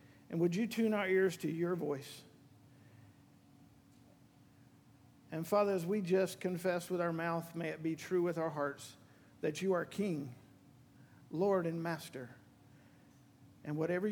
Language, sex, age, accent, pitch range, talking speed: English, male, 50-69, American, 130-150 Hz, 145 wpm